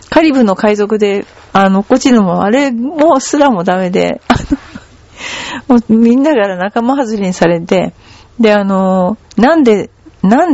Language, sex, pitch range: Japanese, female, 180-255 Hz